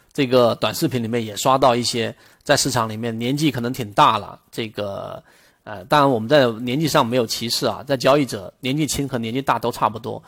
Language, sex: Chinese, male